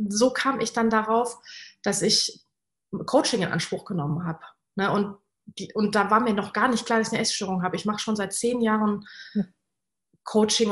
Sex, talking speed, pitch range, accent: female, 190 wpm, 190-230 Hz, German